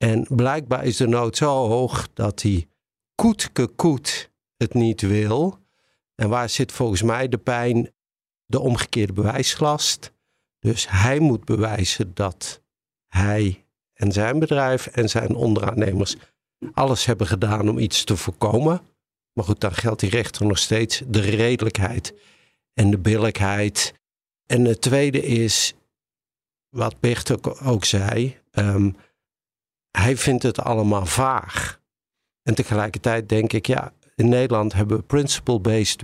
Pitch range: 105-125 Hz